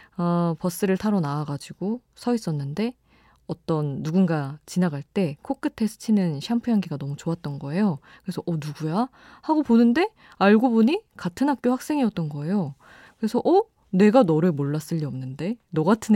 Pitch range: 160-235 Hz